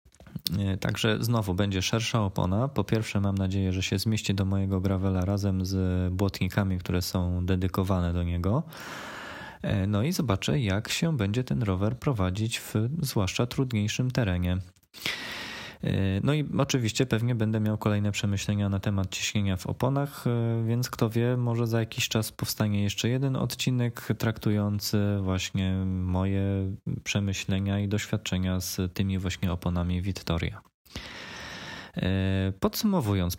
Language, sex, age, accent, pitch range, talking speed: Polish, male, 20-39, native, 95-115 Hz, 130 wpm